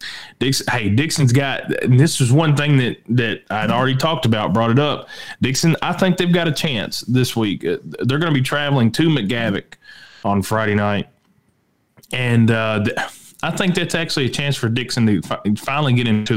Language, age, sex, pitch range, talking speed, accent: English, 20-39, male, 115-145 Hz, 195 wpm, American